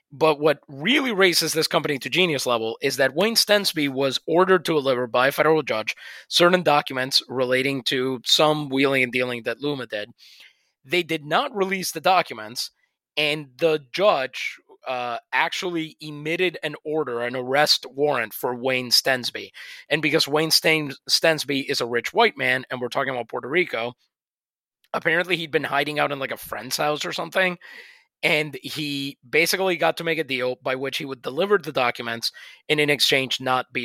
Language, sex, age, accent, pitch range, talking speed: English, male, 20-39, American, 135-180 Hz, 175 wpm